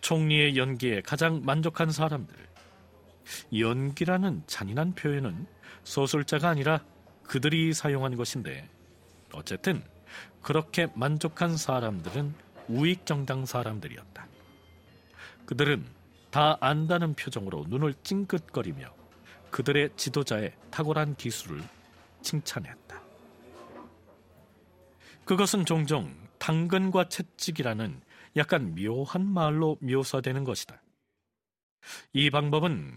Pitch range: 125-160 Hz